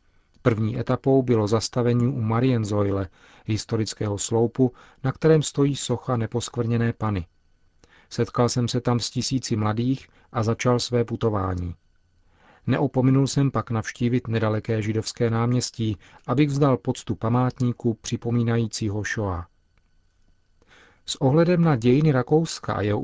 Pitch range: 110-130 Hz